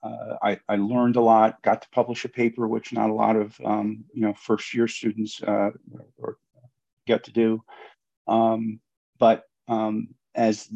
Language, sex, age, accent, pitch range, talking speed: English, male, 50-69, American, 105-120 Hz, 160 wpm